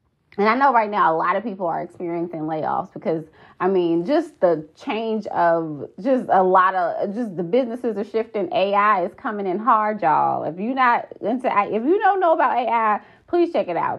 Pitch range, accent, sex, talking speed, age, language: 190-285 Hz, American, female, 205 wpm, 20-39, English